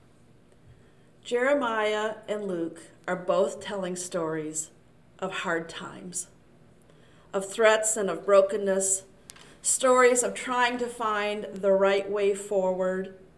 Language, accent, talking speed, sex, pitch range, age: English, American, 110 wpm, female, 190-240 Hz, 40-59